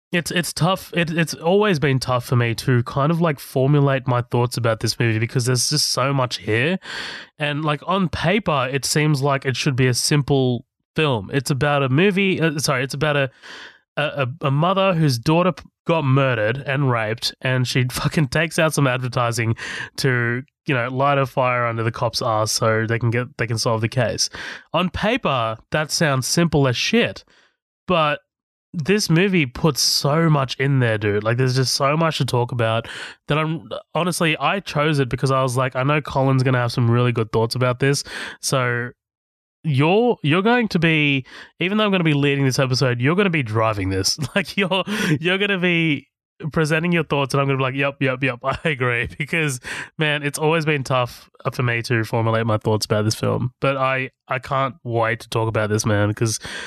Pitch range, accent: 125-155 Hz, Australian